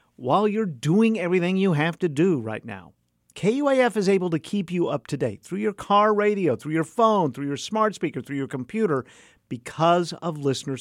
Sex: male